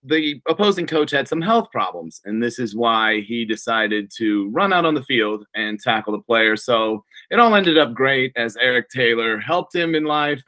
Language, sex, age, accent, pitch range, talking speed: English, male, 30-49, American, 115-155 Hz, 205 wpm